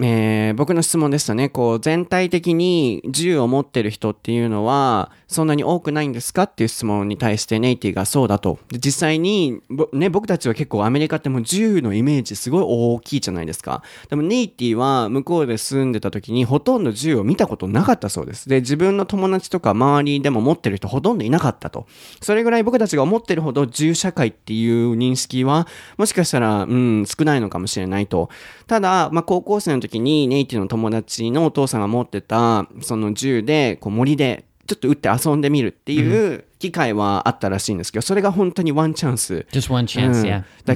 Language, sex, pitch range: Japanese, male, 110-160 Hz